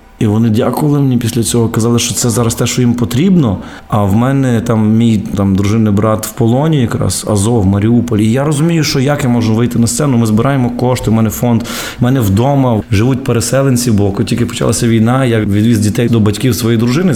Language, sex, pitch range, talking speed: Ukrainian, male, 105-125 Hz, 205 wpm